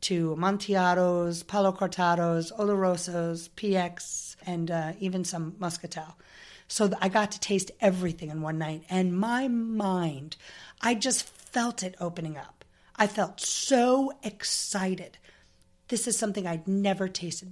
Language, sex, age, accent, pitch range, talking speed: English, female, 40-59, American, 175-220 Hz, 135 wpm